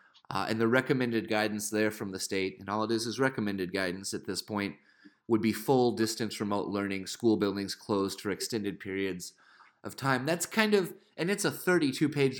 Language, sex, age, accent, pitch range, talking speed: English, male, 30-49, American, 110-130 Hz, 195 wpm